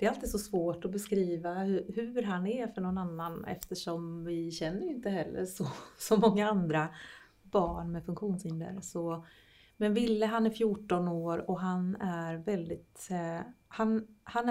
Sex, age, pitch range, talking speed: female, 30-49, 165-205 Hz, 155 wpm